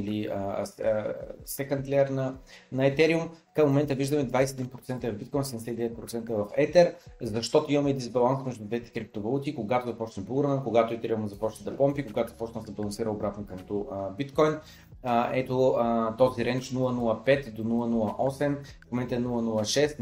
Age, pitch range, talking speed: 30-49, 115-145 Hz, 140 wpm